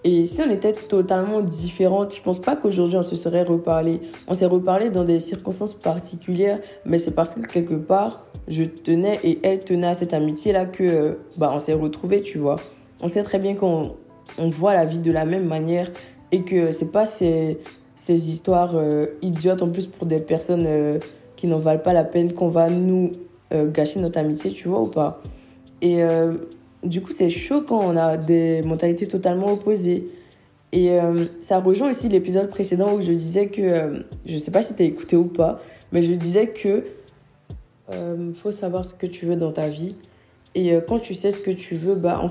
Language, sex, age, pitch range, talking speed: French, female, 20-39, 165-195 Hz, 210 wpm